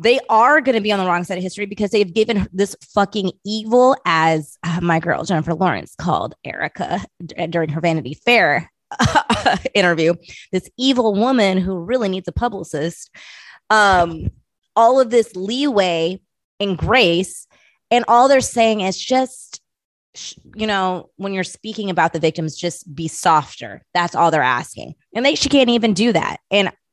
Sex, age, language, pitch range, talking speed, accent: female, 20-39, English, 175-220 Hz, 165 wpm, American